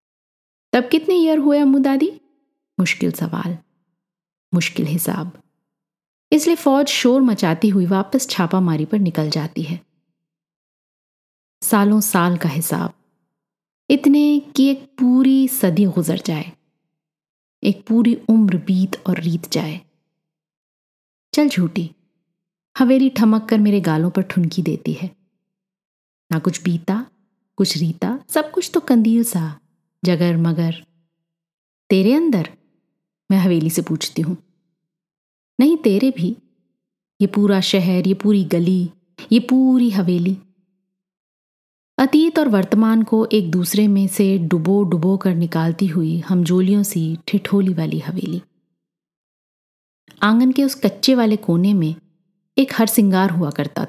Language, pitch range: Hindi, 170-220 Hz